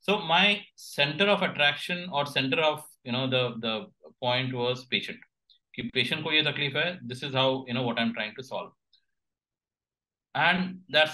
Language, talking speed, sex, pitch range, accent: English, 155 wpm, male, 120-145 Hz, Indian